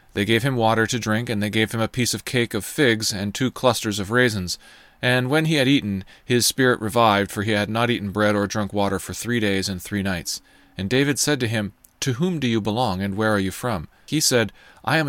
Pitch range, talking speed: 100-120 Hz, 250 wpm